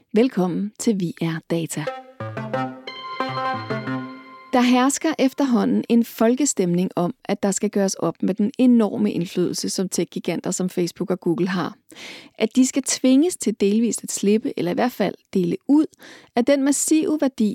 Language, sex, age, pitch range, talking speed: Danish, female, 40-59, 180-245 Hz, 150 wpm